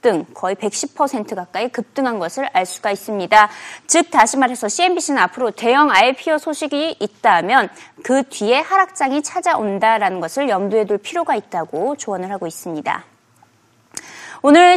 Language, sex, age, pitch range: Korean, female, 20-39, 220-330 Hz